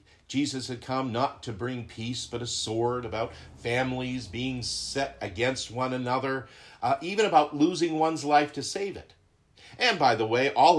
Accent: American